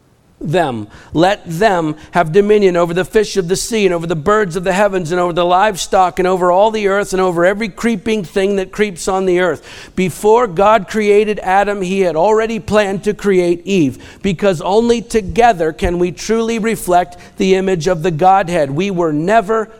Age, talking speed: 50-69, 190 wpm